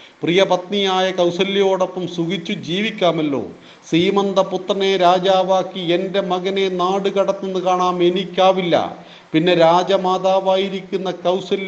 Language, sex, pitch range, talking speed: Hindi, male, 170-195 Hz, 50 wpm